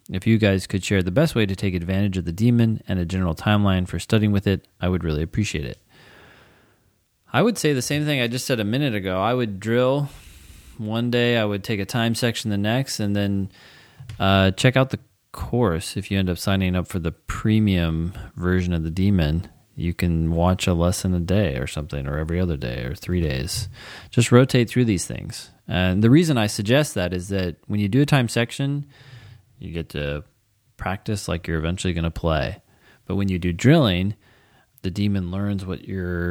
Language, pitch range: English, 90-110 Hz